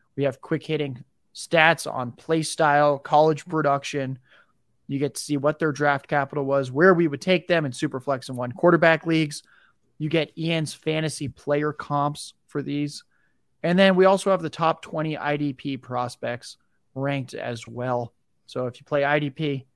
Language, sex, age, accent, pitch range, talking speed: English, male, 20-39, American, 135-165 Hz, 170 wpm